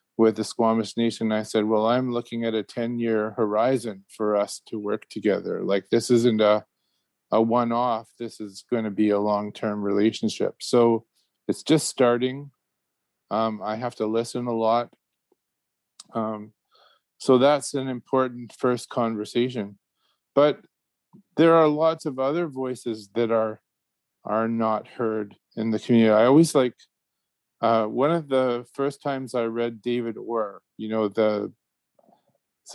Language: English